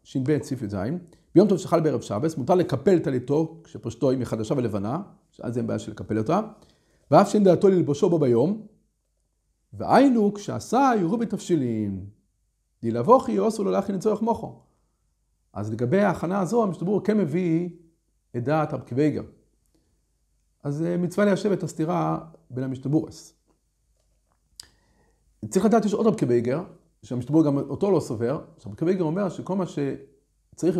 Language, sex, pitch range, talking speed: Hebrew, male, 125-180 Hz, 130 wpm